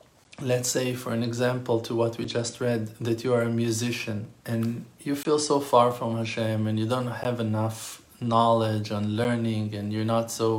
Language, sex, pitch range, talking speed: English, male, 115-135 Hz, 195 wpm